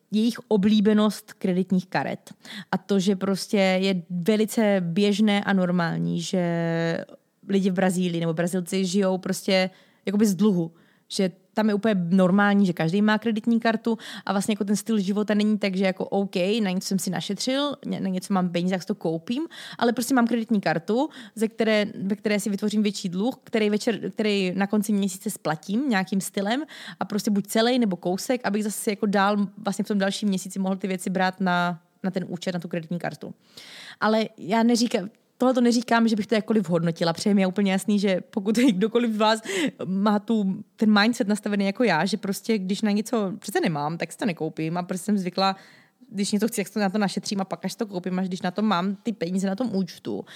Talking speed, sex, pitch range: 205 wpm, female, 185-220 Hz